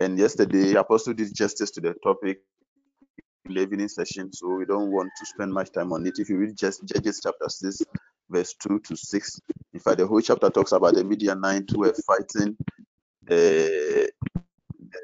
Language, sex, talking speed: English, male, 190 wpm